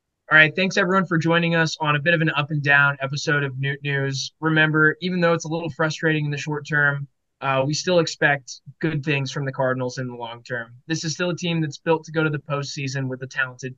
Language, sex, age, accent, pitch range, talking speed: English, male, 20-39, American, 140-165 Hz, 255 wpm